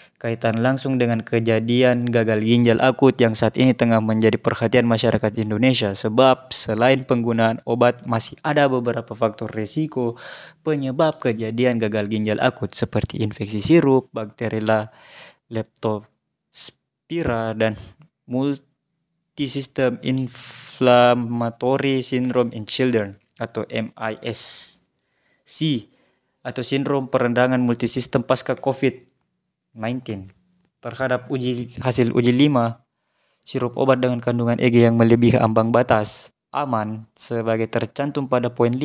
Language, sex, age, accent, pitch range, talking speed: Indonesian, male, 20-39, native, 115-130 Hz, 105 wpm